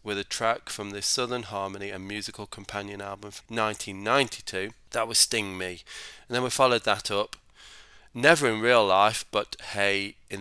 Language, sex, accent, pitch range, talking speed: English, male, British, 95-115 Hz, 175 wpm